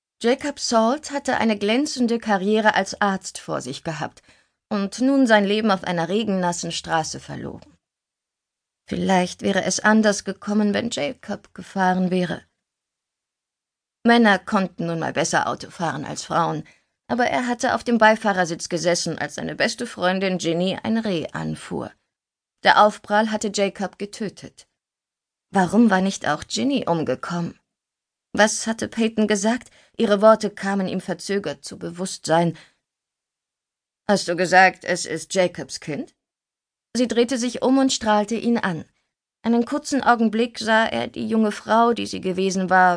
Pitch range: 180-225 Hz